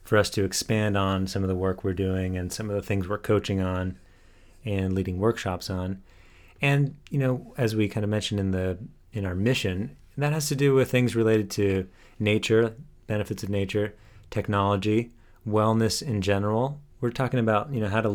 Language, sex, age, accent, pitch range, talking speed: English, male, 30-49, American, 95-115 Hz, 195 wpm